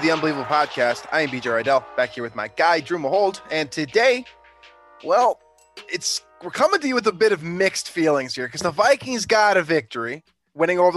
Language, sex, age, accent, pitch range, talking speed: English, male, 20-39, American, 140-190 Hz, 200 wpm